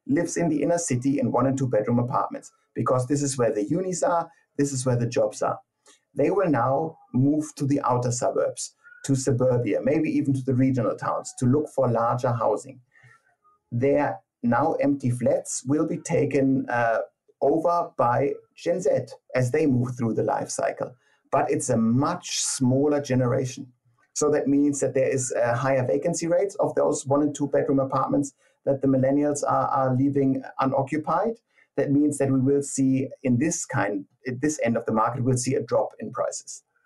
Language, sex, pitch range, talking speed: English, male, 130-150 Hz, 185 wpm